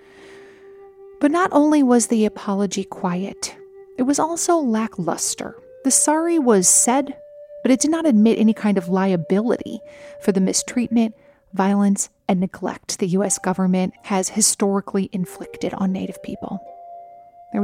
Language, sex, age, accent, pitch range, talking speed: English, female, 30-49, American, 195-260 Hz, 135 wpm